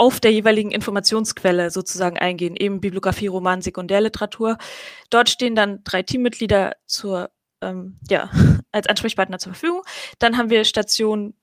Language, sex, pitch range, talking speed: German, female, 205-250 Hz, 135 wpm